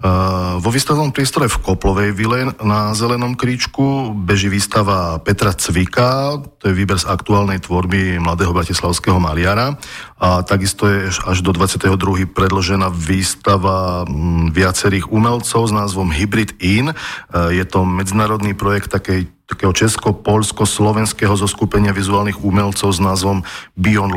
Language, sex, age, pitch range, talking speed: Slovak, male, 40-59, 90-105 Hz, 125 wpm